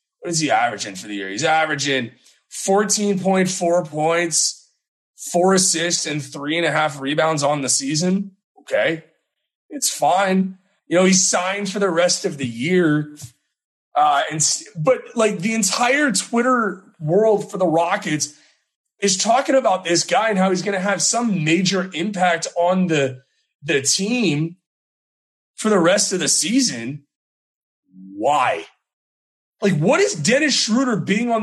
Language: English